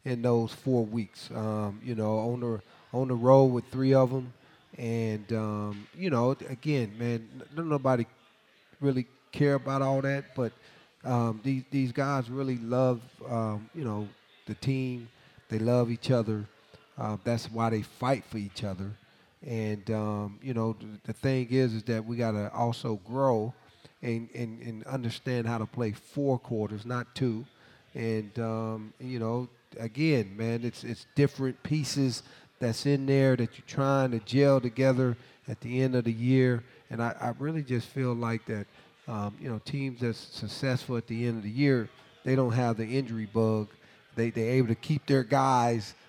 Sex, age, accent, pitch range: male, 30-49, American, 115-130 Hz